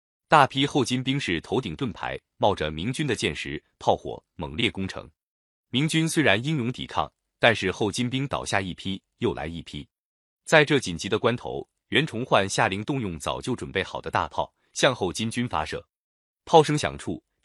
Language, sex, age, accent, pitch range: Chinese, male, 30-49, native, 90-145 Hz